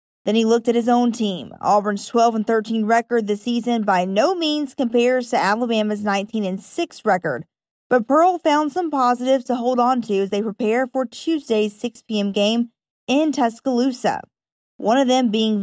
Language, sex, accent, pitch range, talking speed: English, female, American, 210-255 Hz, 180 wpm